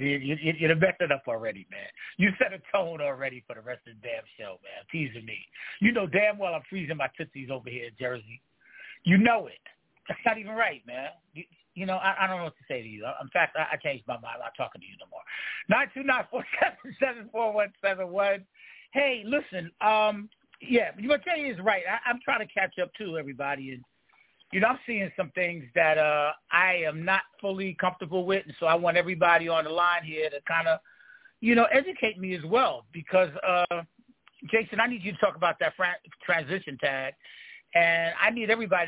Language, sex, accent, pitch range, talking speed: English, male, American, 165-220 Hz, 225 wpm